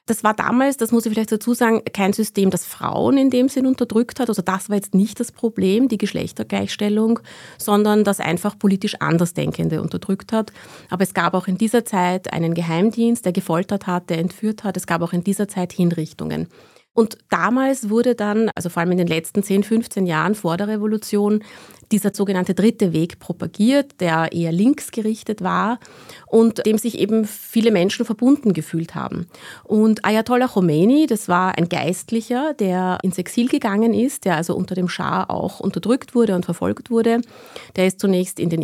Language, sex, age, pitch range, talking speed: German, female, 30-49, 180-225 Hz, 185 wpm